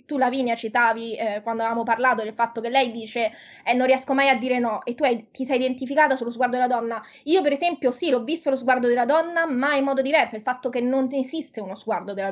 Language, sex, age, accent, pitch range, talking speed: Italian, female, 20-39, native, 230-280 Hz, 250 wpm